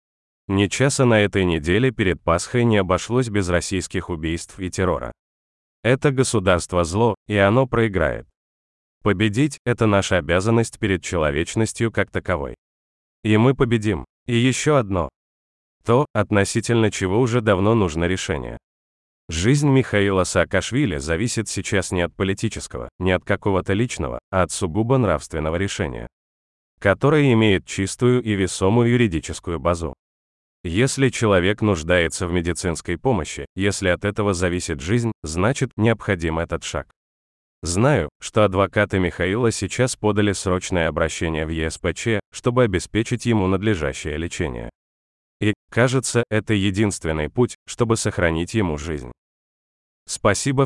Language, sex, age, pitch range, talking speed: Russian, male, 30-49, 80-115 Hz, 125 wpm